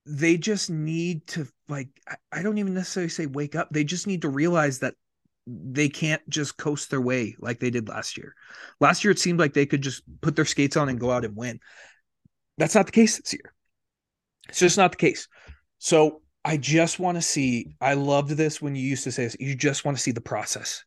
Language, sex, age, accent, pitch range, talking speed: English, male, 30-49, American, 130-175 Hz, 225 wpm